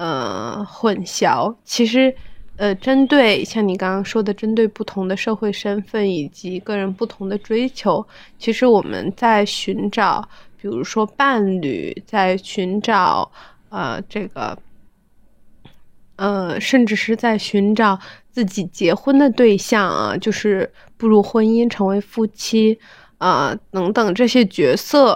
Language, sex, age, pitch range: Chinese, female, 20-39, 195-225 Hz